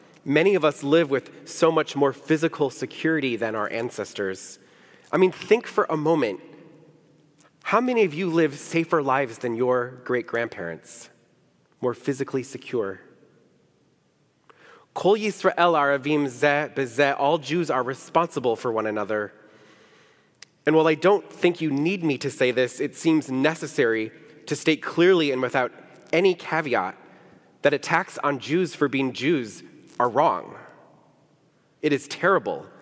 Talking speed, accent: 130 wpm, American